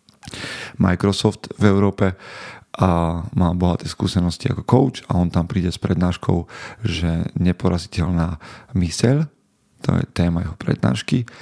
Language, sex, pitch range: Slovak, male, 85-100 Hz